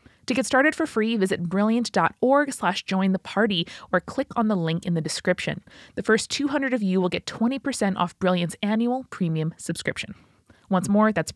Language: English